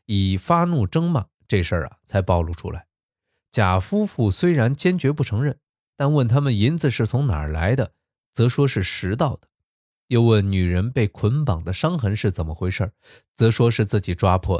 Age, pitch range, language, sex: 20-39, 95-130 Hz, Chinese, male